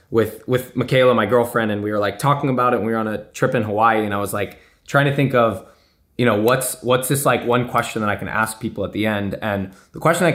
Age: 20-39